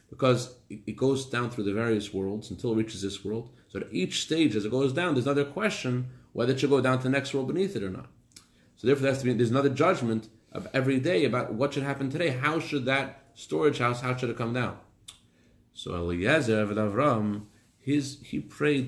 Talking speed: 225 wpm